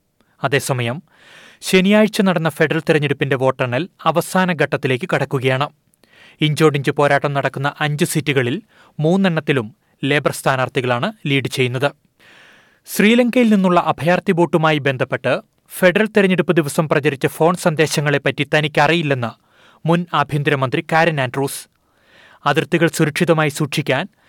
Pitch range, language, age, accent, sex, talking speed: 145-175 Hz, Malayalam, 30-49, native, male, 90 wpm